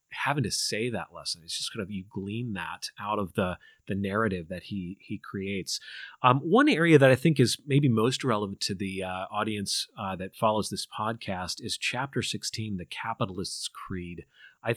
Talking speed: 190 wpm